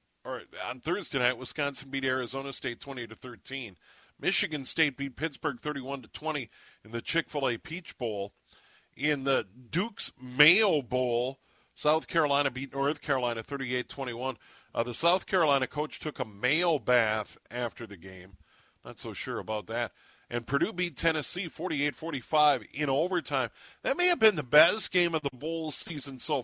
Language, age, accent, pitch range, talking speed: English, 40-59, American, 125-155 Hz, 155 wpm